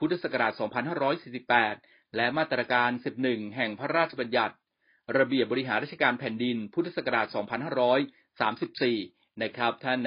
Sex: male